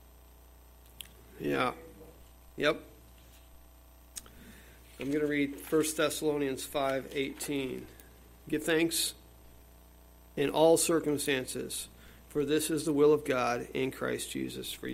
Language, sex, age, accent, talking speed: English, male, 40-59, American, 100 wpm